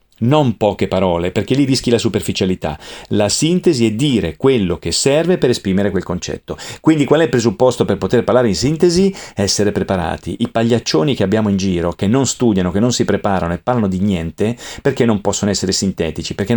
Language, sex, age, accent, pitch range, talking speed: Italian, male, 40-59, native, 100-140 Hz, 195 wpm